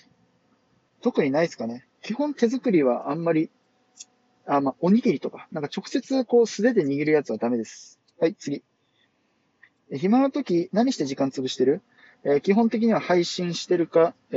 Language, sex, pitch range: Japanese, male, 145-220 Hz